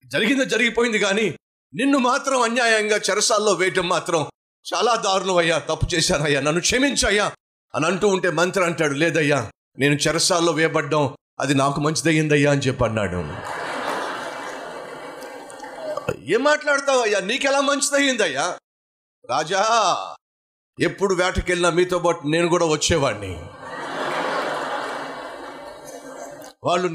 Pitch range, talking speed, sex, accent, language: 150-195 Hz, 100 wpm, male, native, Telugu